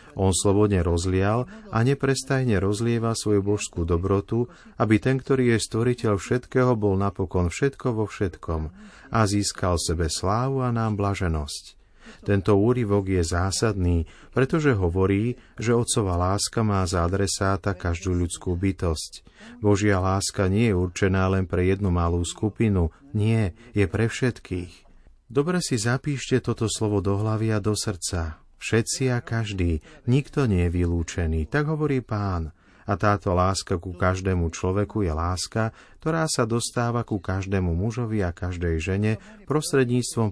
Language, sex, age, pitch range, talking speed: Slovak, male, 40-59, 90-120 Hz, 140 wpm